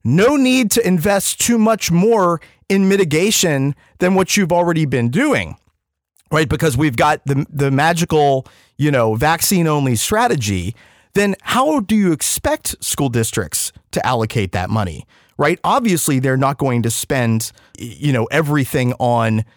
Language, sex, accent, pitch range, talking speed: English, male, American, 115-165 Hz, 150 wpm